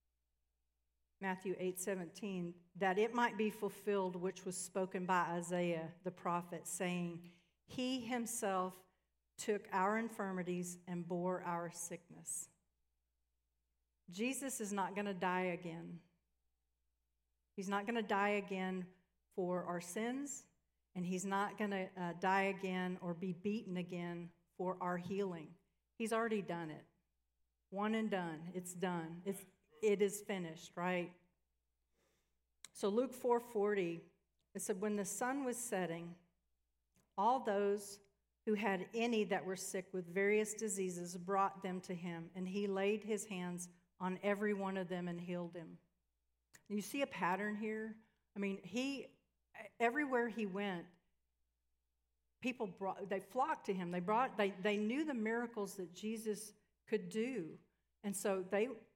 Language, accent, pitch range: English, American, 175-205 Hz